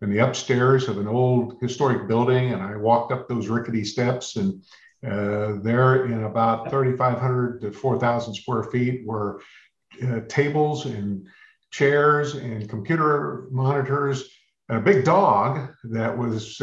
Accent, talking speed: American, 135 wpm